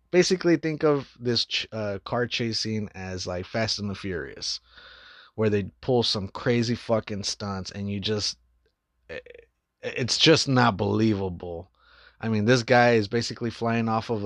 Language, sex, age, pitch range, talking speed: English, male, 20-39, 100-125 Hz, 150 wpm